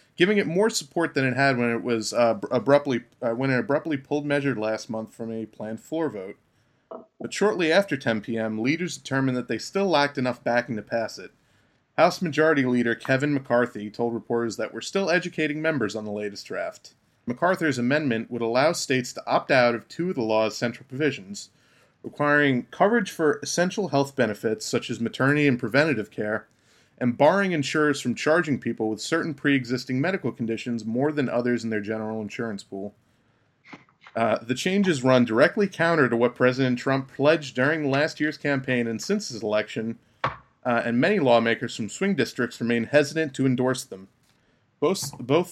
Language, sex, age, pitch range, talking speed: English, male, 30-49, 115-150 Hz, 180 wpm